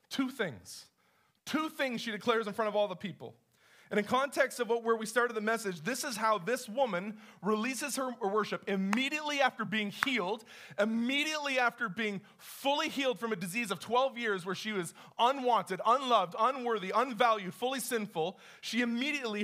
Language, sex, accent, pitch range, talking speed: English, male, American, 200-250 Hz, 175 wpm